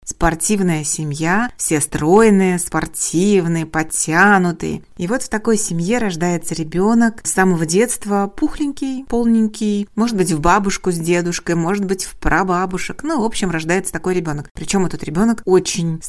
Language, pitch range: Russian, 165-210 Hz